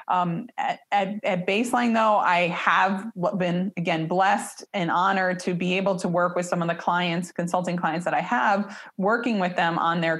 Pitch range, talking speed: 170-200 Hz, 195 wpm